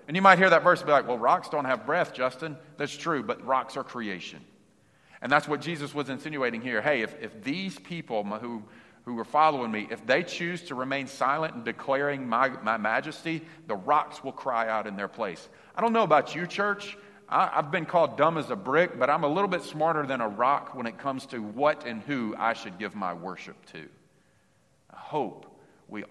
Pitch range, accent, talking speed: 120-175 Hz, American, 220 wpm